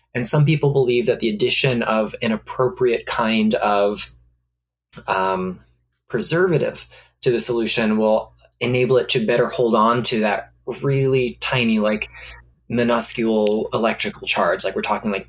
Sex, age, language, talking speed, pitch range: male, 20-39, English, 140 wpm, 90-130 Hz